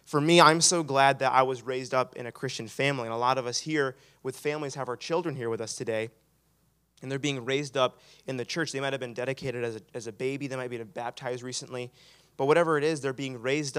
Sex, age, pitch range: male, 20-39, 120-150 Hz